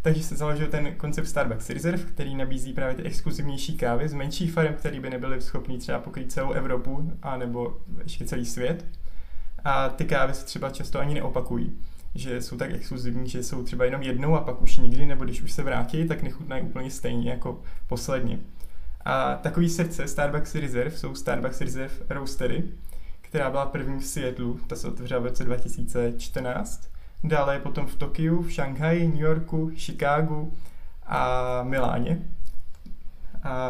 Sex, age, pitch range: male, 20-39, 125-160 Hz